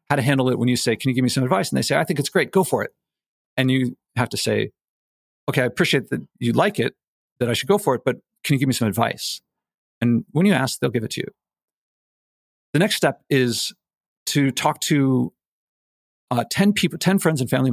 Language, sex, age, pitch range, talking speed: English, male, 50-69, 120-155 Hz, 240 wpm